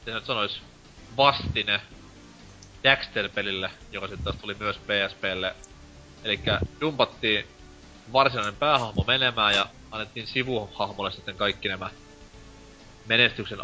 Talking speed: 105 wpm